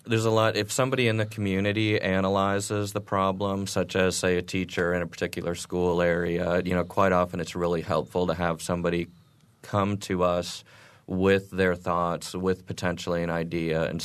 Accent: American